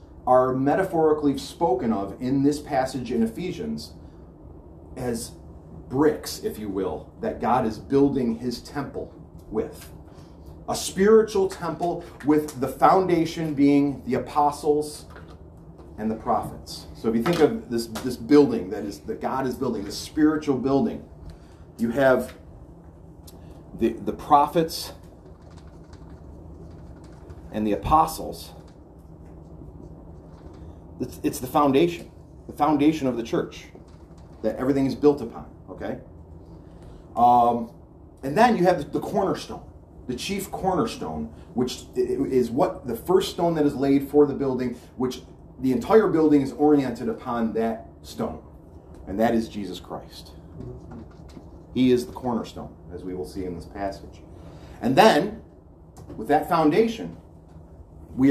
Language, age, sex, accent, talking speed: English, 40-59, male, American, 130 wpm